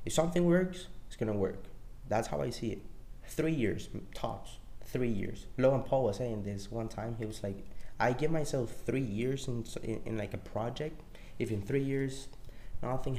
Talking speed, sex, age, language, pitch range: 195 wpm, male, 20-39, English, 110-150 Hz